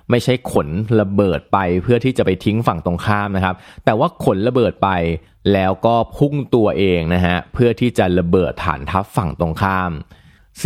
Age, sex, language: 20-39, male, Thai